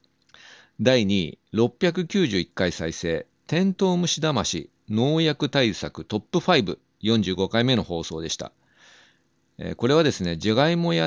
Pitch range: 90-130 Hz